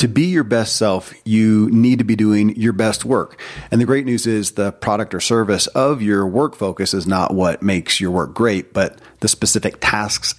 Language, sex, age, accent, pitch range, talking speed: English, male, 40-59, American, 95-115 Hz, 215 wpm